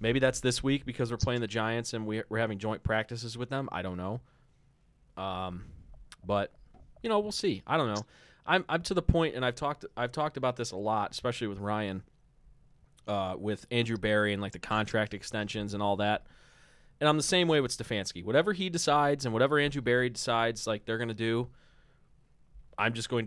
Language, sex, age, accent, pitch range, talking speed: English, male, 20-39, American, 110-130 Hz, 205 wpm